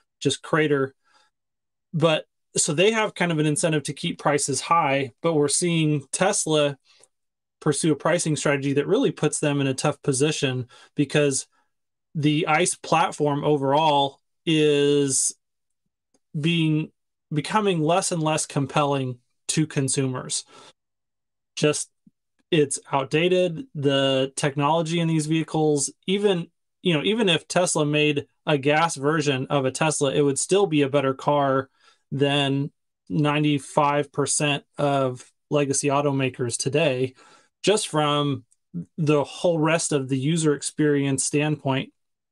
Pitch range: 140-155 Hz